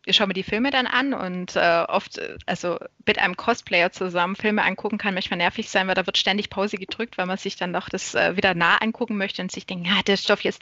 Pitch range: 185-215 Hz